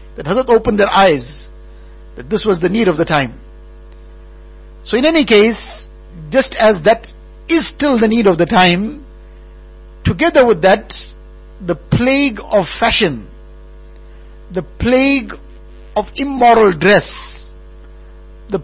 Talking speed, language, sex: 130 wpm, English, male